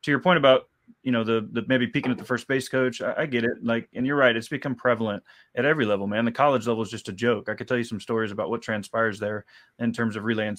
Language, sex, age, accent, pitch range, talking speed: English, male, 20-39, American, 115-130 Hz, 290 wpm